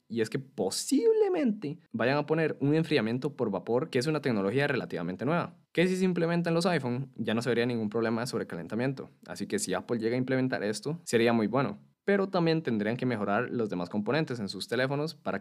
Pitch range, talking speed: 110-145 Hz, 210 wpm